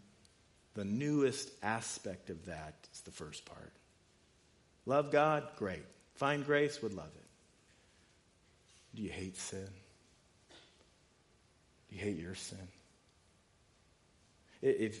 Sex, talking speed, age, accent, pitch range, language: male, 110 wpm, 40-59, American, 100-150 Hz, English